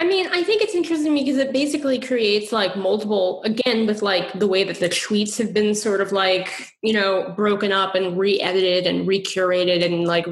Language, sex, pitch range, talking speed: English, female, 185-225 Hz, 205 wpm